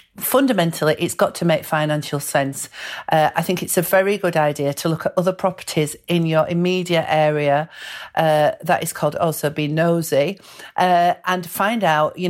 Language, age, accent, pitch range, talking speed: English, 50-69, British, 155-195 Hz, 175 wpm